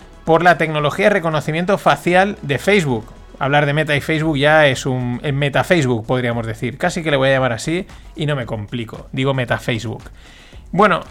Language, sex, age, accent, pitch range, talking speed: Spanish, male, 30-49, Spanish, 135-175 Hz, 180 wpm